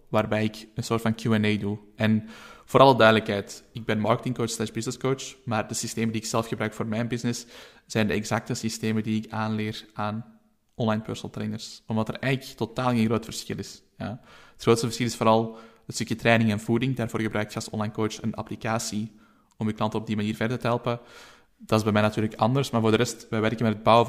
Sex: male